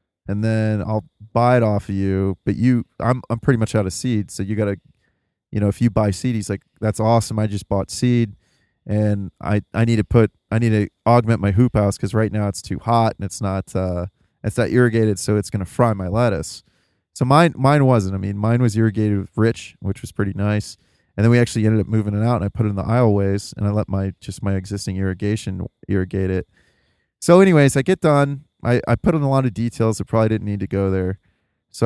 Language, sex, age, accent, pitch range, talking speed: English, male, 30-49, American, 100-125 Hz, 240 wpm